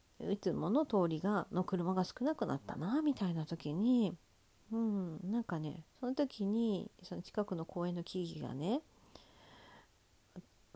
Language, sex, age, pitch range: Japanese, female, 50-69, 160-215 Hz